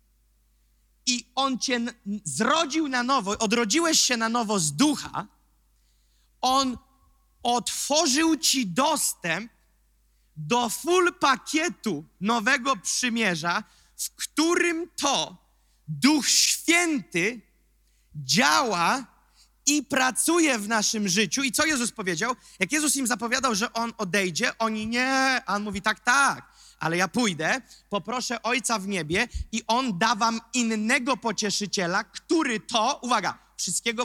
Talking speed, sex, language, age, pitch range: 120 wpm, male, Polish, 30-49, 190-260 Hz